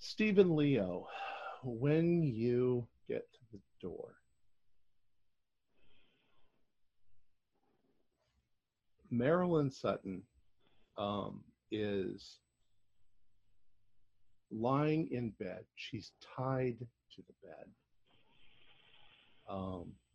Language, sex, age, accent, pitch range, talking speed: English, male, 50-69, American, 100-130 Hz, 65 wpm